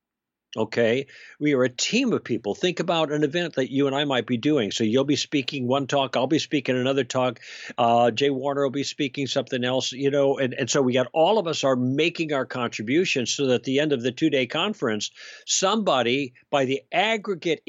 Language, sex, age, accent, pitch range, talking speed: English, male, 60-79, American, 120-150 Hz, 215 wpm